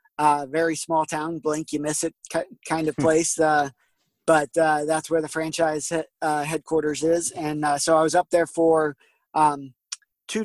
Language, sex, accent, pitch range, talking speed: English, male, American, 150-165 Hz, 190 wpm